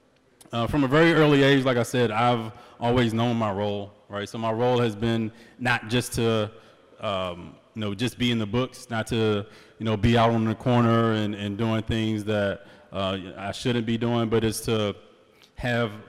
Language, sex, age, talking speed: English, male, 20-39, 200 wpm